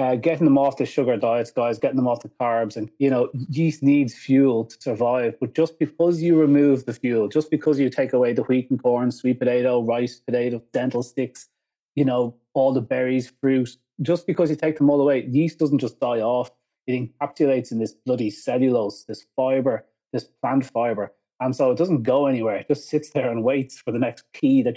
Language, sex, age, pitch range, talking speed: English, male, 30-49, 115-140 Hz, 215 wpm